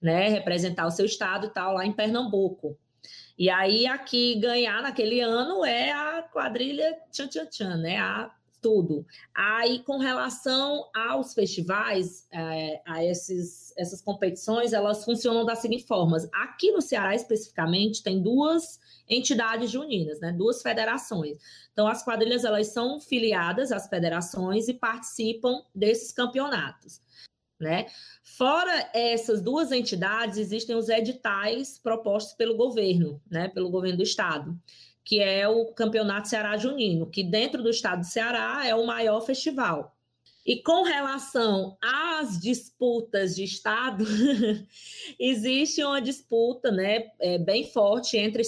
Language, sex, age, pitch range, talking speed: Portuguese, female, 20-39, 190-245 Hz, 130 wpm